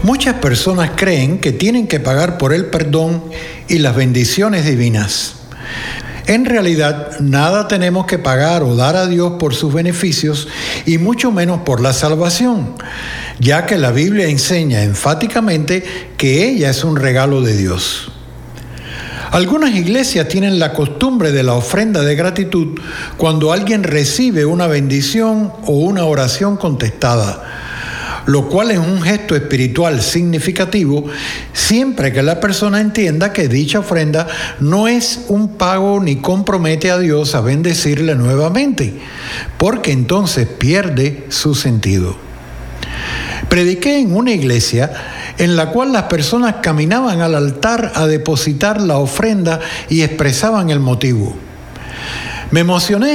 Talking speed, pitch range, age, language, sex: 135 wpm, 135-190 Hz, 60-79, Spanish, male